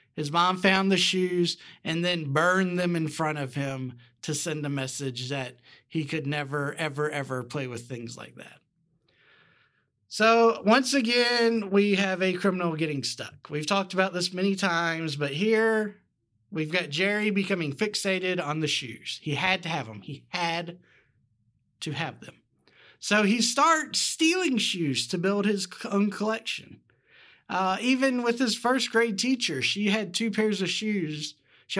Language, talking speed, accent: English, 165 wpm, American